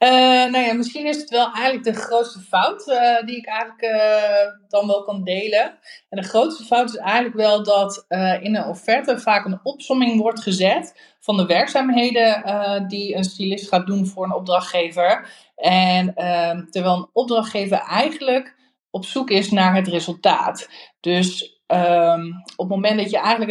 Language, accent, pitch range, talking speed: Dutch, Dutch, 180-225 Hz, 175 wpm